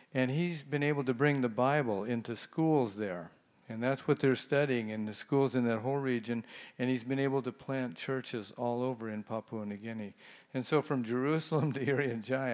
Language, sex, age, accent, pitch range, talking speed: English, male, 50-69, American, 115-140 Hz, 200 wpm